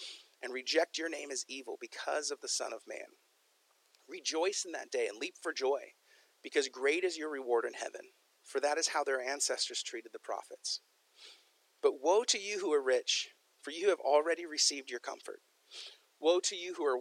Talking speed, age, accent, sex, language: 195 wpm, 40-59, American, male, English